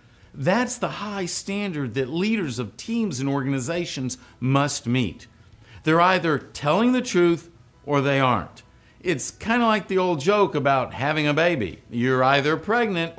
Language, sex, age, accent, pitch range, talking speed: English, male, 50-69, American, 120-185 Hz, 155 wpm